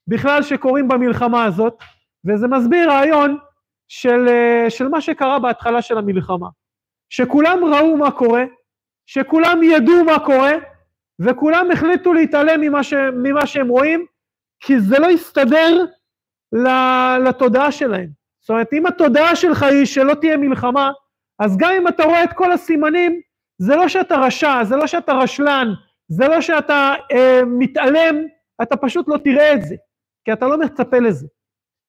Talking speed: 145 wpm